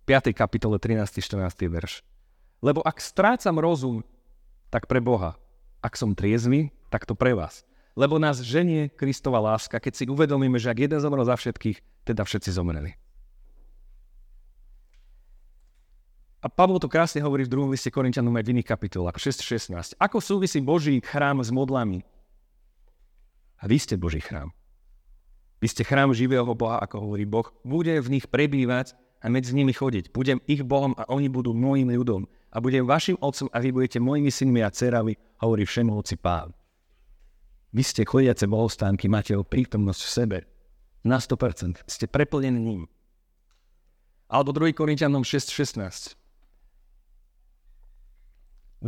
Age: 30-49